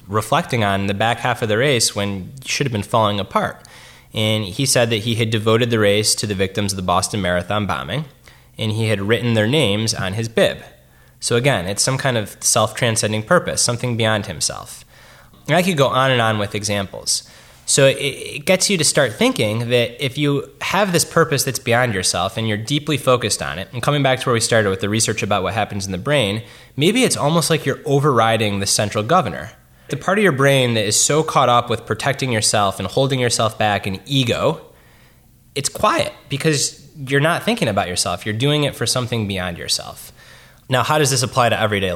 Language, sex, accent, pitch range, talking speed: English, male, American, 105-135 Hz, 215 wpm